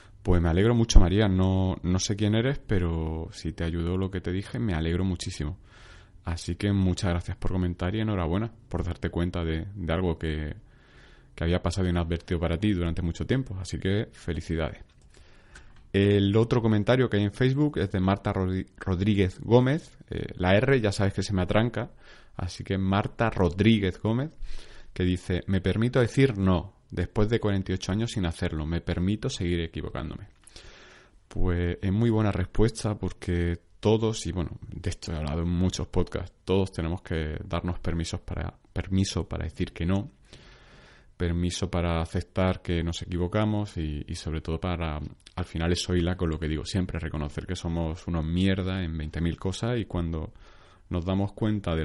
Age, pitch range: 30-49, 85-100 Hz